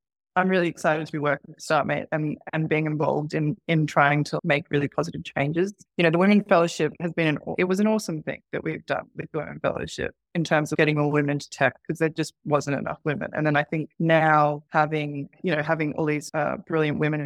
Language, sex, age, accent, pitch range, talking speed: English, female, 20-39, Australian, 150-170 Hz, 235 wpm